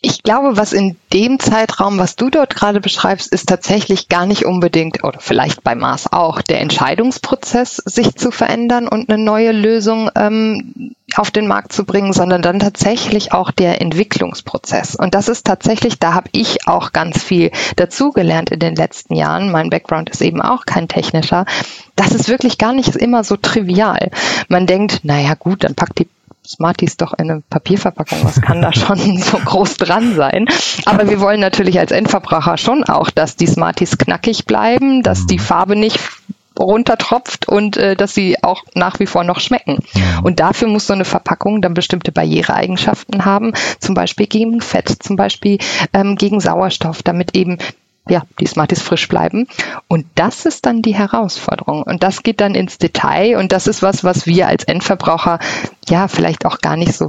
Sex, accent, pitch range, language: female, German, 180-220 Hz, German